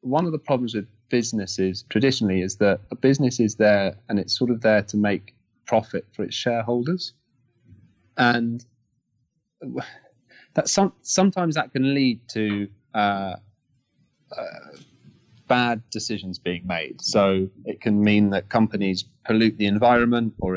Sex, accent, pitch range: male, British, 100-125 Hz